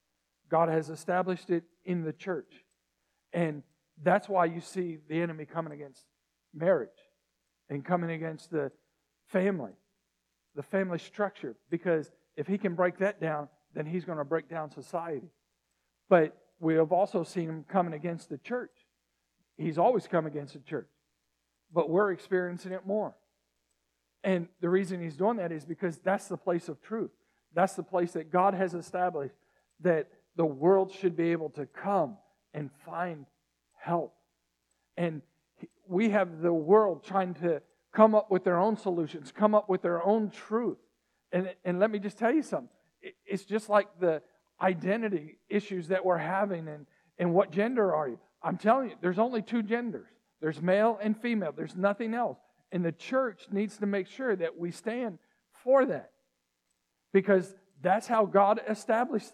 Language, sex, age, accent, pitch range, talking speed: English, male, 50-69, American, 160-200 Hz, 165 wpm